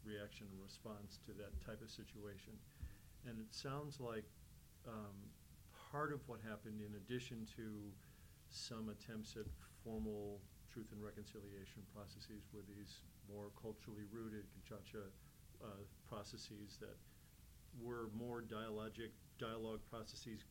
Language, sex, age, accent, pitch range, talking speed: English, male, 50-69, American, 105-120 Hz, 115 wpm